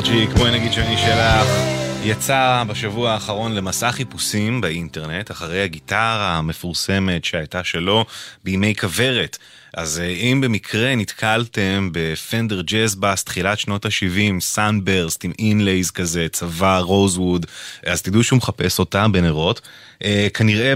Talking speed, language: 115 wpm, English